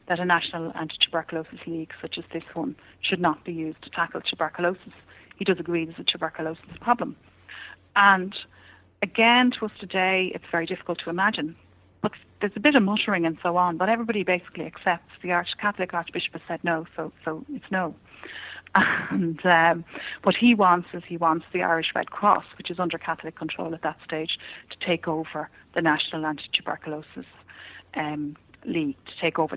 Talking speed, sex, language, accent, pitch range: 180 wpm, female, English, Irish, 160-185 Hz